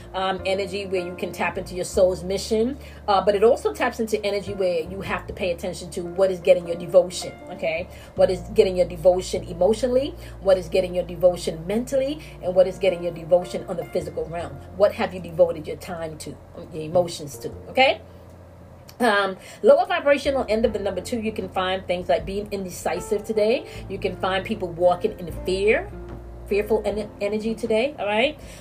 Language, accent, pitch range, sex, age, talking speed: English, American, 180-225 Hz, female, 30-49, 190 wpm